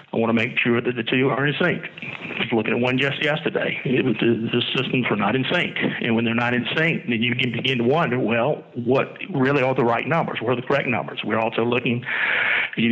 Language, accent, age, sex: English, American, 50-69, male